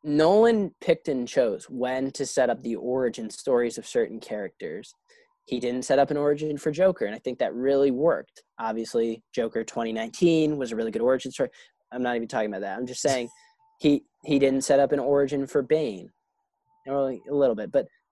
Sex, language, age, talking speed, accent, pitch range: male, English, 10-29, 195 wpm, American, 125-180 Hz